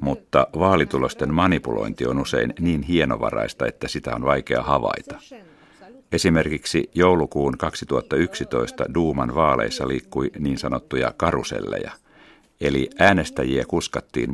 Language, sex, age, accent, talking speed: Finnish, male, 50-69, native, 100 wpm